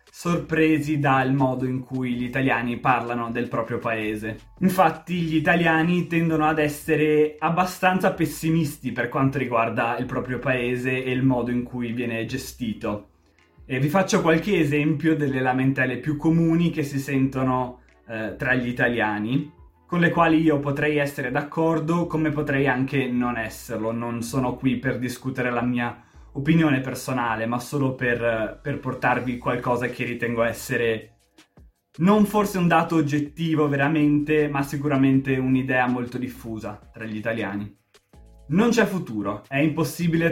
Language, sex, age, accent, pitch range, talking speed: Italian, male, 20-39, native, 120-155 Hz, 145 wpm